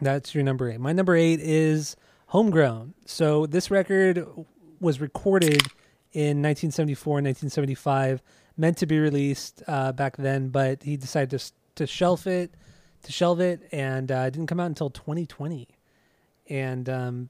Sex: male